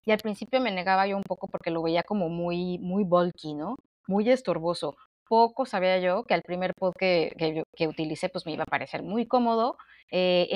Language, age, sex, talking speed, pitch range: Spanish, 30-49, female, 210 wpm, 175-210 Hz